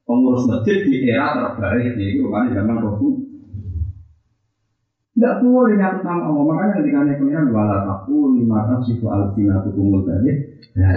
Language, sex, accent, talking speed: Indonesian, male, native, 90 wpm